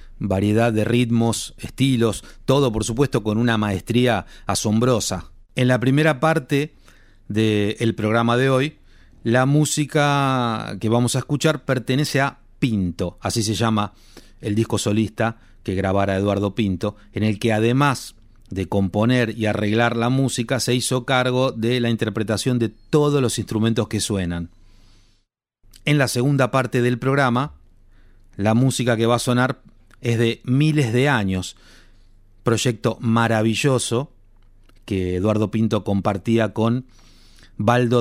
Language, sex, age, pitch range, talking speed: Spanish, male, 30-49, 100-125 Hz, 135 wpm